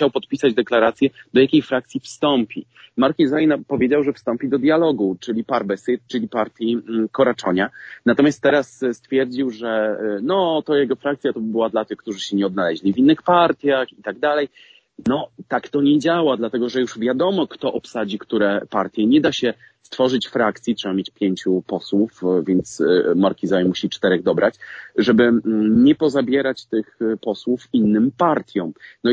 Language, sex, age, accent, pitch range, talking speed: Polish, male, 30-49, native, 105-135 Hz, 155 wpm